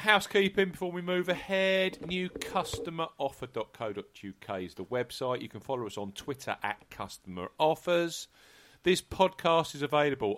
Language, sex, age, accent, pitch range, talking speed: English, male, 40-59, British, 105-160 Hz, 120 wpm